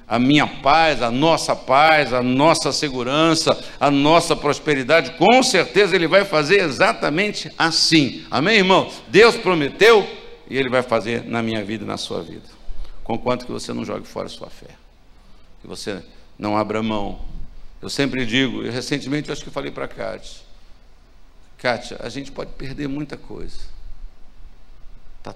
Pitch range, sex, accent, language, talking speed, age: 95-155 Hz, male, Brazilian, Portuguese, 165 wpm, 60-79